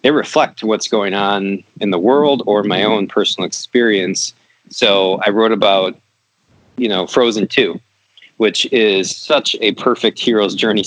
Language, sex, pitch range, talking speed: English, male, 95-115 Hz, 155 wpm